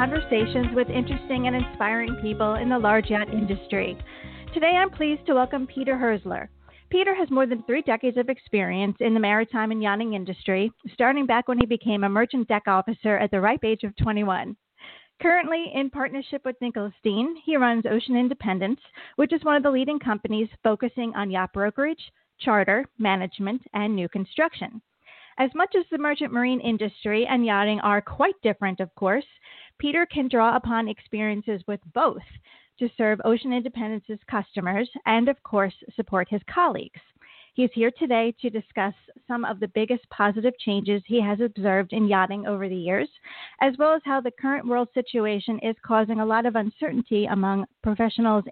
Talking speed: 170 wpm